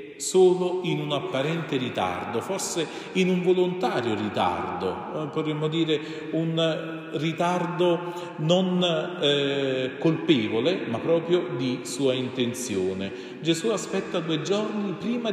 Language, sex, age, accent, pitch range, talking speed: Italian, male, 40-59, native, 120-175 Hz, 105 wpm